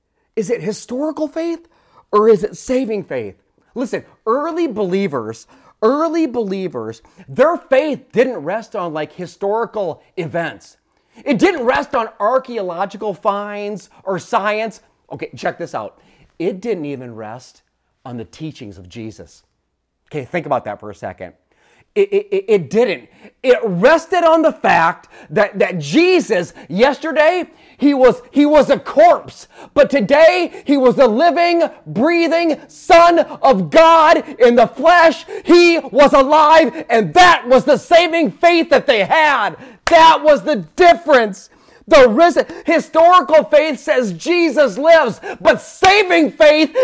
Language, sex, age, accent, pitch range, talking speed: English, male, 30-49, American, 230-320 Hz, 140 wpm